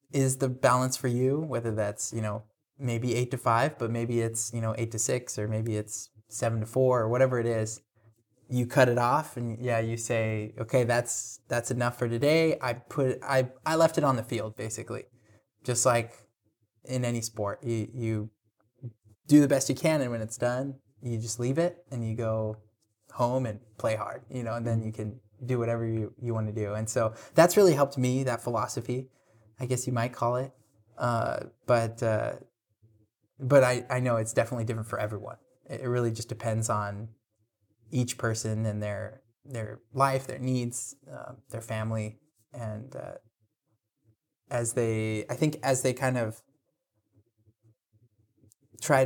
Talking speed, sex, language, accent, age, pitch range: 180 wpm, male, English, American, 20-39, 110-130 Hz